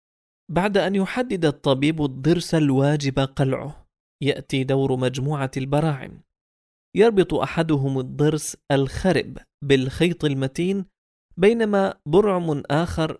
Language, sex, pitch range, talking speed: English, male, 135-170 Hz, 90 wpm